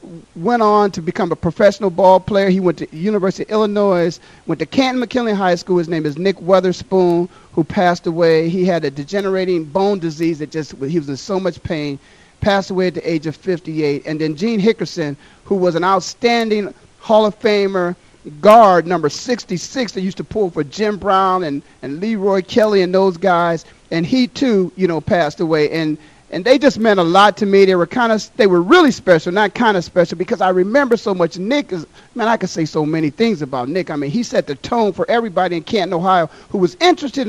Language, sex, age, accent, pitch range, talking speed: English, male, 40-59, American, 170-215 Hz, 215 wpm